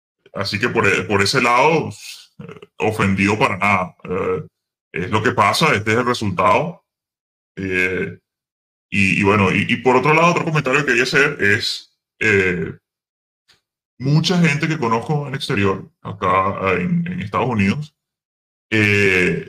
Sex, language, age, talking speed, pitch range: female, Spanish, 10-29, 150 wpm, 100-135 Hz